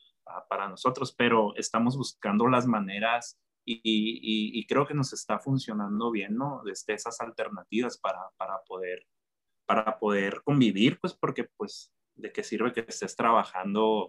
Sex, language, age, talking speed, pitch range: male, Spanish, 30-49, 150 wpm, 105-140 Hz